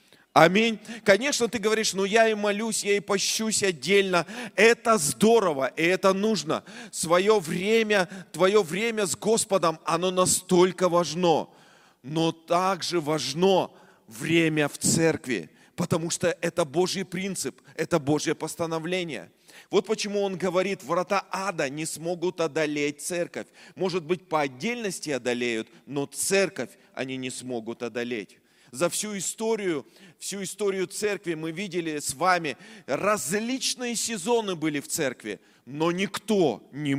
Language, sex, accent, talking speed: Russian, male, native, 130 wpm